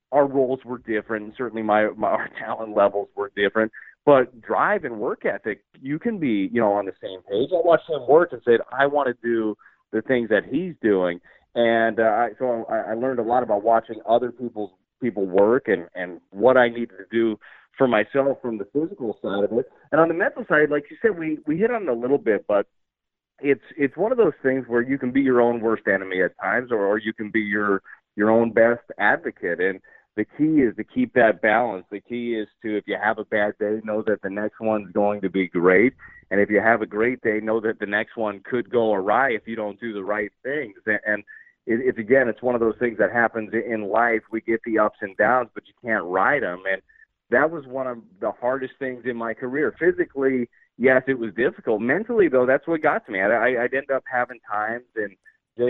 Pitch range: 105-130 Hz